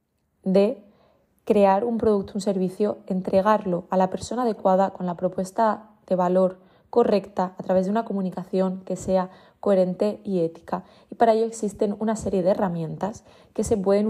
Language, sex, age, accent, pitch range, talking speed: Spanish, female, 20-39, Spanish, 180-220 Hz, 160 wpm